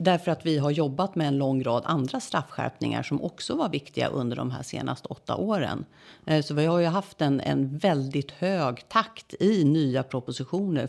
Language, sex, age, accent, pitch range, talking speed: Swedish, female, 50-69, native, 130-160 Hz, 185 wpm